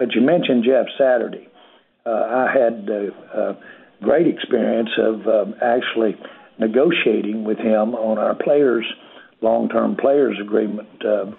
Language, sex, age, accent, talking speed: English, male, 60-79, American, 135 wpm